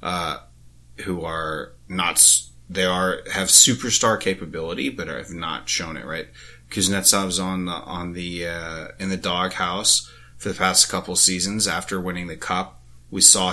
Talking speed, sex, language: 155 wpm, male, English